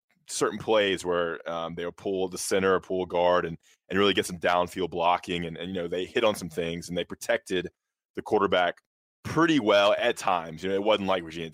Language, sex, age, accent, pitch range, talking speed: English, male, 20-39, American, 80-95 Hz, 225 wpm